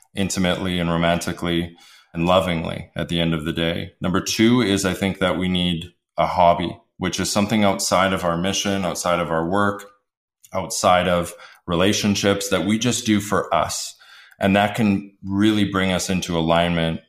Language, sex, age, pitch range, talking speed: English, male, 20-39, 85-105 Hz, 170 wpm